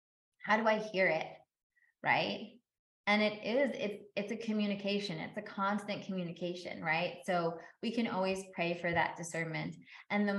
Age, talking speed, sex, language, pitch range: 20-39, 160 wpm, female, English, 175-215 Hz